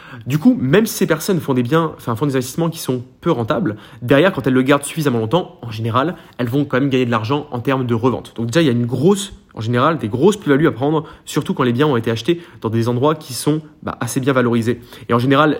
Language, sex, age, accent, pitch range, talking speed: French, male, 20-39, French, 125-155 Hz, 260 wpm